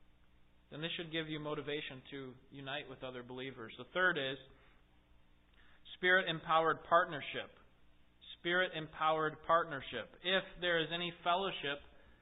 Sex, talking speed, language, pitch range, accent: male, 115 wpm, English, 120-190 Hz, American